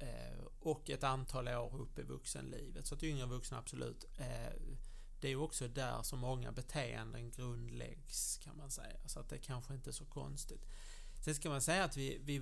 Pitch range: 120-140 Hz